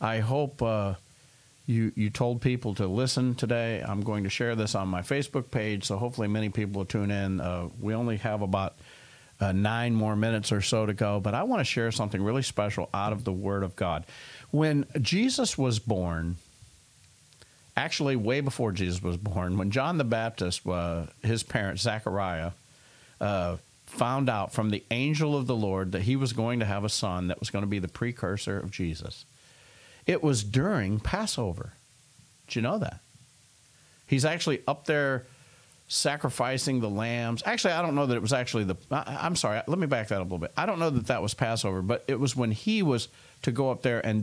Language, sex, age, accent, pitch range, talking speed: English, male, 50-69, American, 100-130 Hz, 200 wpm